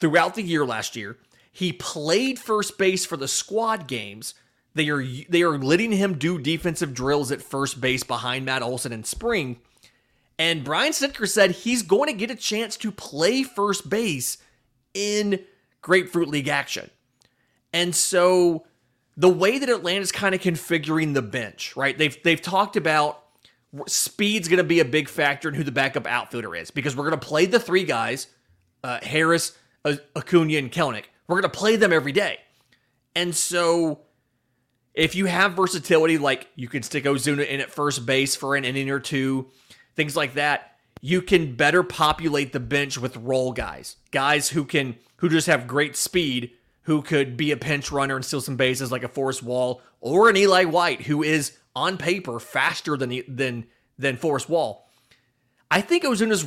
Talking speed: 180 wpm